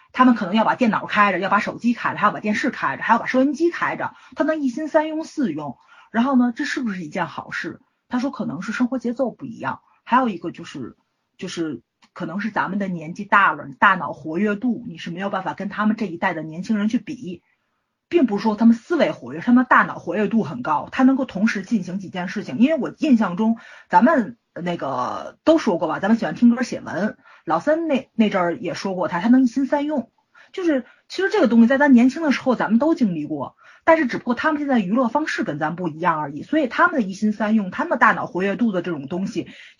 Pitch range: 195-265 Hz